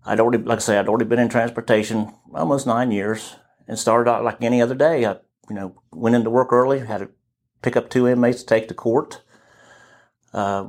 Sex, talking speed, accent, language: male, 215 wpm, American, English